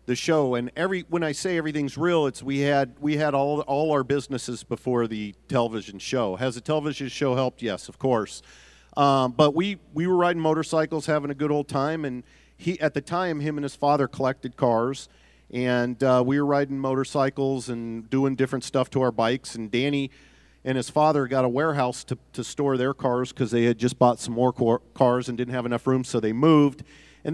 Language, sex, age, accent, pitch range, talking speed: English, male, 40-59, American, 120-145 Hz, 210 wpm